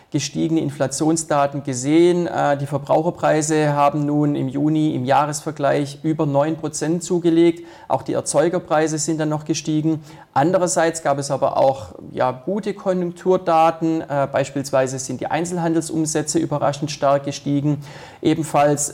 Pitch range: 135-165 Hz